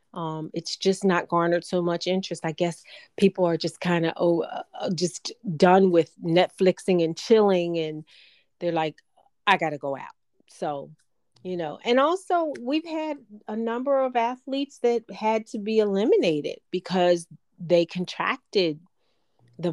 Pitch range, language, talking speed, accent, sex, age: 160-195 Hz, English, 155 wpm, American, female, 30-49